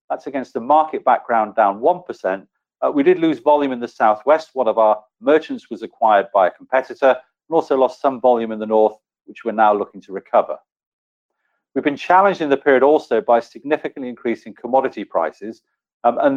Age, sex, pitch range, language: 40-59, male, 115-150 Hz, English